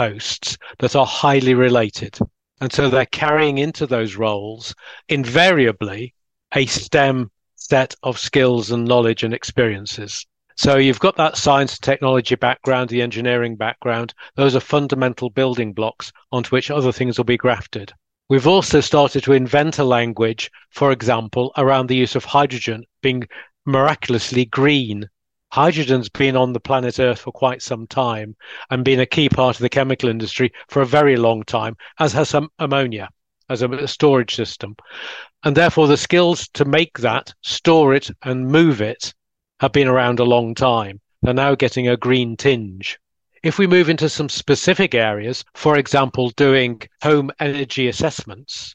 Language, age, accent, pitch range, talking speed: English, 40-59, British, 120-145 Hz, 160 wpm